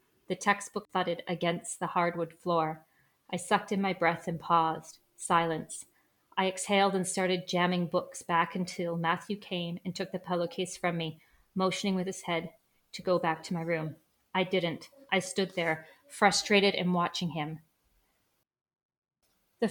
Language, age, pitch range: English, 40-59, 170-190 Hz